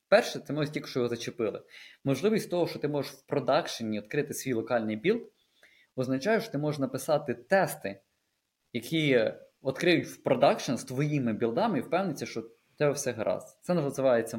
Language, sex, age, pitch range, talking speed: Ukrainian, male, 20-39, 115-145 Hz, 165 wpm